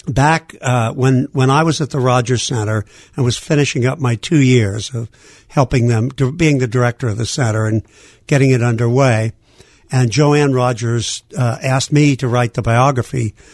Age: 60-79